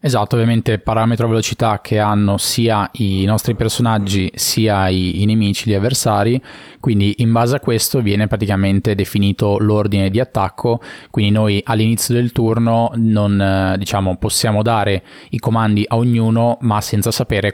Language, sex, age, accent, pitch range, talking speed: Italian, male, 20-39, native, 100-115 Hz, 145 wpm